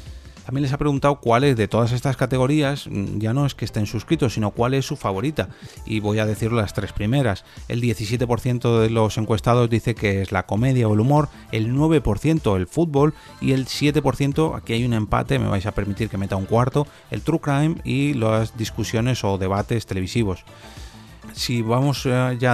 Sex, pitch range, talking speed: male, 105-130 Hz, 190 wpm